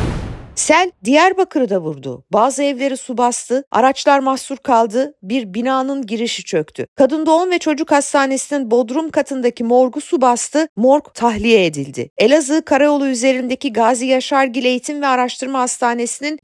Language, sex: Turkish, female